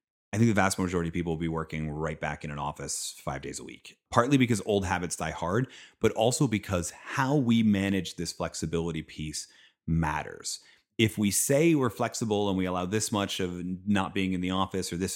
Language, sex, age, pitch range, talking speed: English, male, 30-49, 85-110 Hz, 210 wpm